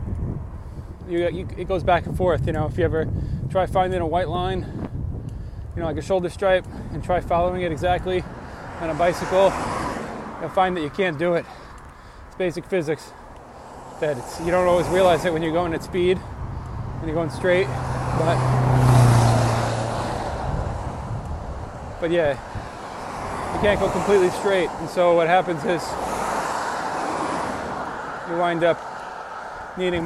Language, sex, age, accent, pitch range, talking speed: English, male, 20-39, American, 125-180 Hz, 145 wpm